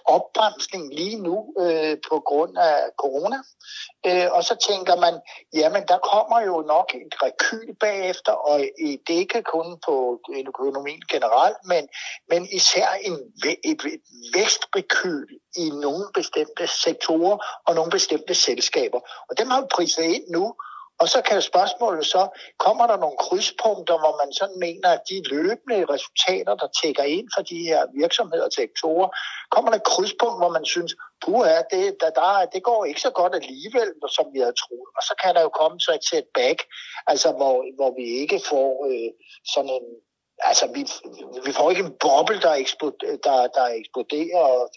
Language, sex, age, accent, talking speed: Danish, male, 60-79, native, 165 wpm